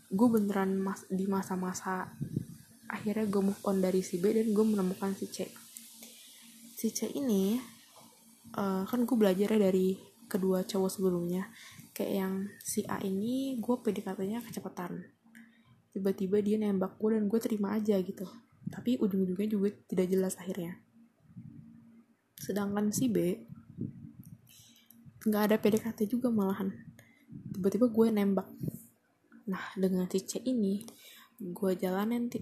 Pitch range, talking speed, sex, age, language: 190-225 Hz, 125 wpm, female, 20-39, Indonesian